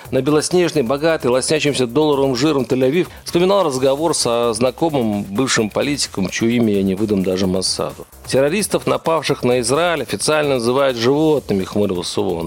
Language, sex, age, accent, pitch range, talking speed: Russian, male, 40-59, native, 110-160 Hz, 135 wpm